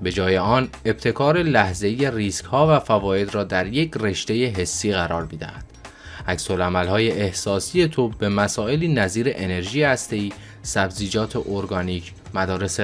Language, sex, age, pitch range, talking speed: Persian, male, 20-39, 90-120 Hz, 125 wpm